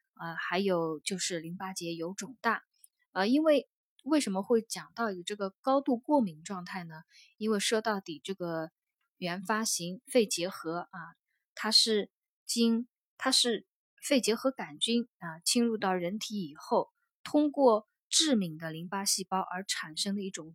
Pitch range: 180-235 Hz